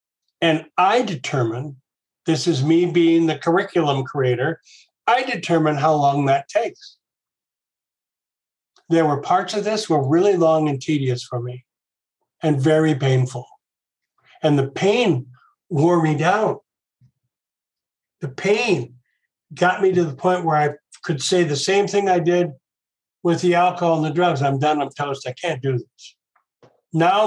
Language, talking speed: English, 150 wpm